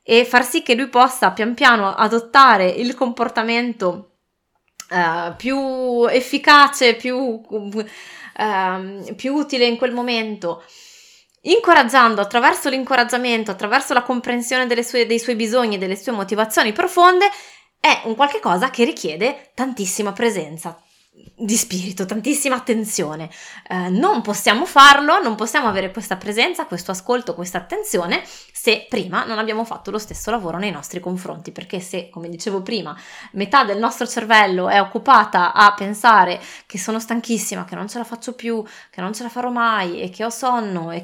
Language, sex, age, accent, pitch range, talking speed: Italian, female, 20-39, native, 200-245 Hz, 155 wpm